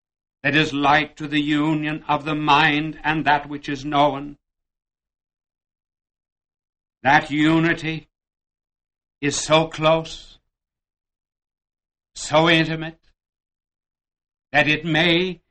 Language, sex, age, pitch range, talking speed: English, male, 60-79, 125-165 Hz, 95 wpm